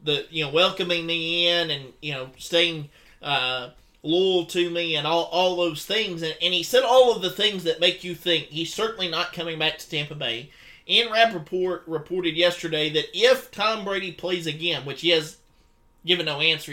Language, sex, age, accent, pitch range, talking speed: English, male, 30-49, American, 155-185 Hz, 200 wpm